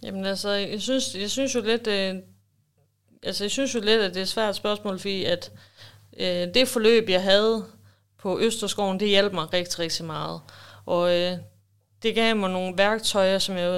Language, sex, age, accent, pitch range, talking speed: Danish, female, 30-49, native, 165-195 Hz, 190 wpm